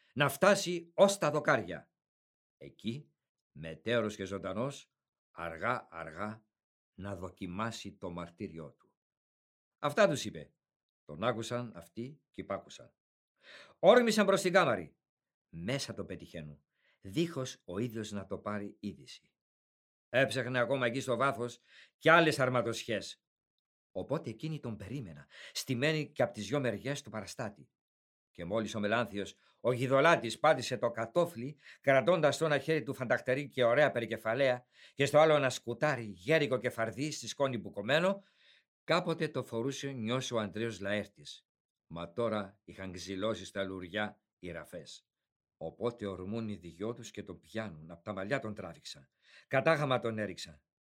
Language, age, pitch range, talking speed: Greek, 50-69, 100-140 Hz, 140 wpm